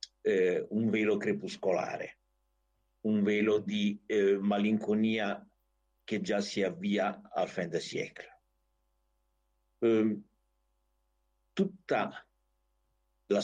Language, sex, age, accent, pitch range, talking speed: Italian, male, 60-79, native, 95-135 Hz, 90 wpm